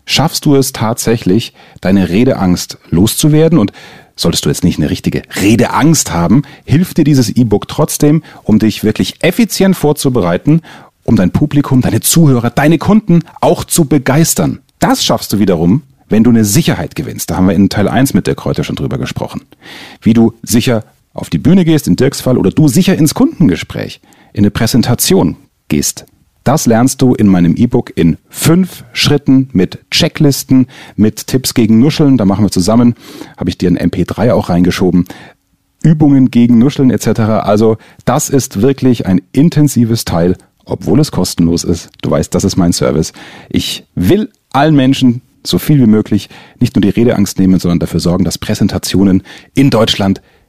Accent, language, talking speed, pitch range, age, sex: German, German, 170 wpm, 100-145 Hz, 40-59, male